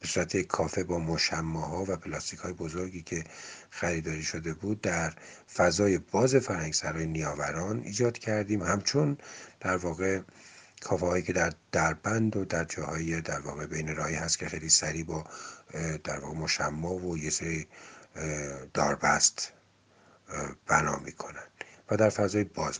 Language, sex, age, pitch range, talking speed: Persian, male, 50-69, 80-95 Hz, 135 wpm